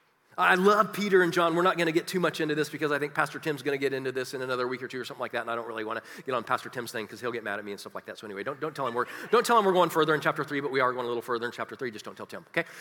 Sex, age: male, 40-59